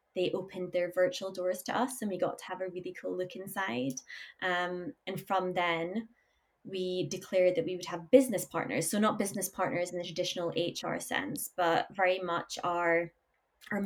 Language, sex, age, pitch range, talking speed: English, female, 20-39, 175-200 Hz, 185 wpm